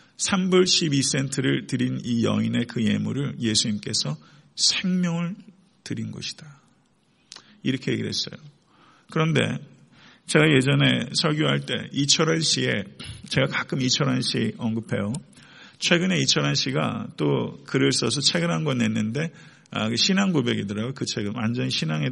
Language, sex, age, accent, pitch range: Korean, male, 40-59, native, 120-160 Hz